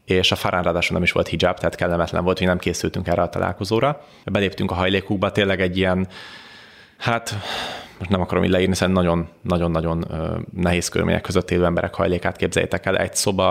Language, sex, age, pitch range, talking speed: Hungarian, male, 30-49, 90-105 Hz, 180 wpm